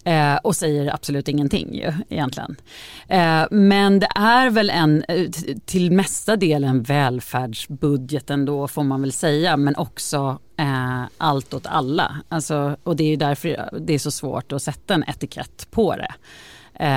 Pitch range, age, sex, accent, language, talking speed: 135-165 Hz, 30-49, female, native, Swedish, 150 wpm